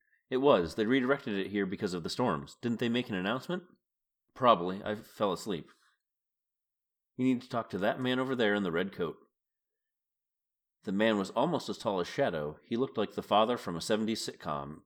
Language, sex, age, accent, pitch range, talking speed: English, male, 30-49, American, 90-120 Hz, 200 wpm